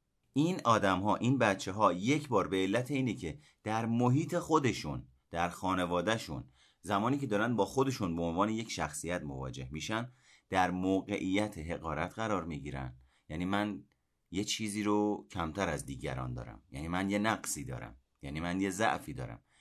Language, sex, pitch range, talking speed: Persian, male, 80-115 Hz, 160 wpm